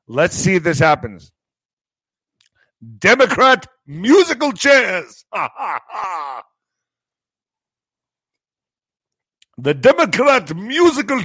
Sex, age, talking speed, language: male, 50-69, 60 wpm, English